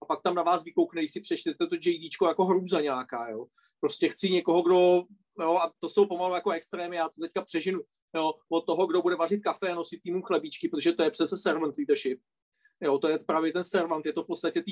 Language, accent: Czech, native